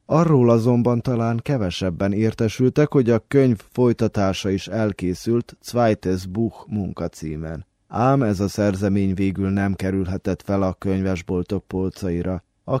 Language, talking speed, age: Hungarian, 125 wpm, 20-39